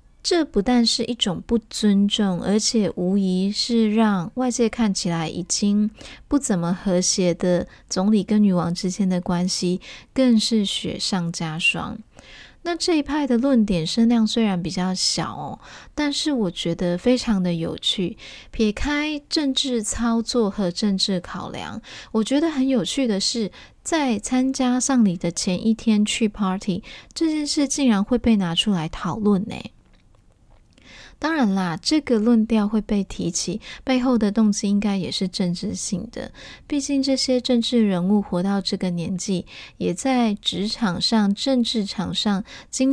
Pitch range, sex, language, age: 190-240 Hz, female, Chinese, 20-39